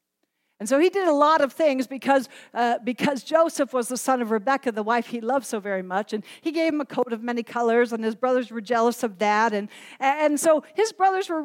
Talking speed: 240 wpm